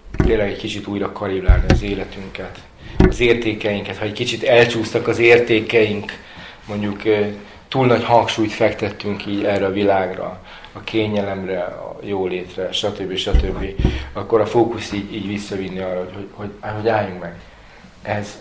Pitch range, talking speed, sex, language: 95-115 Hz, 145 wpm, male, Hungarian